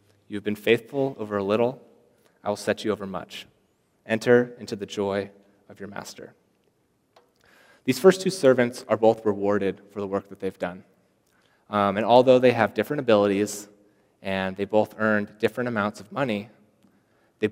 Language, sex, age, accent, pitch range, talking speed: English, male, 30-49, American, 100-120 Hz, 170 wpm